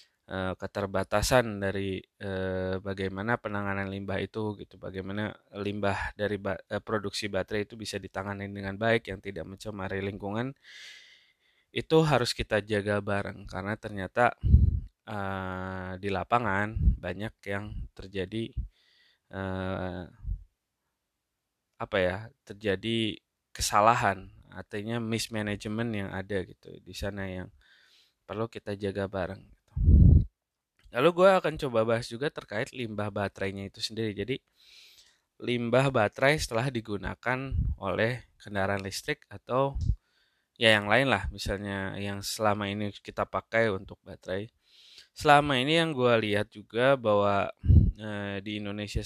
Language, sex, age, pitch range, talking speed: Indonesian, male, 20-39, 95-115 Hz, 110 wpm